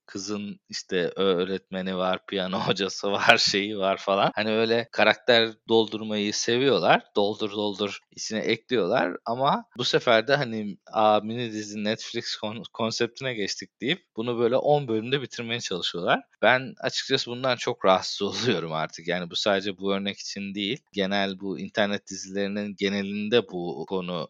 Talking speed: 145 wpm